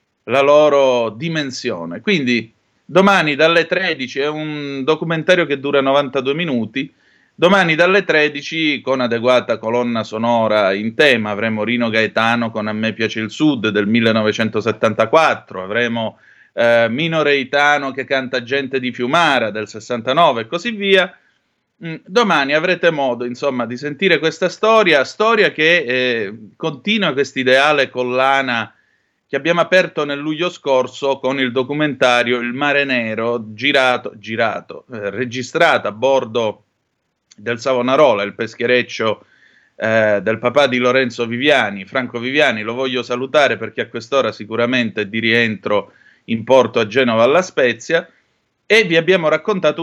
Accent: native